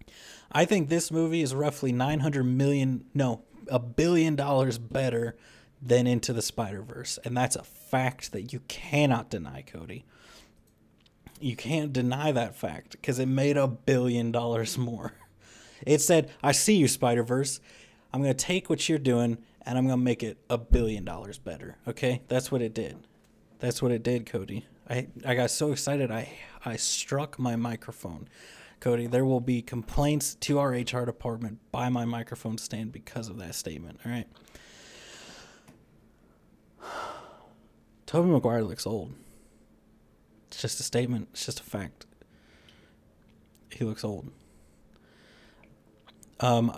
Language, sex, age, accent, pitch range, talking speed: English, male, 30-49, American, 115-135 Hz, 145 wpm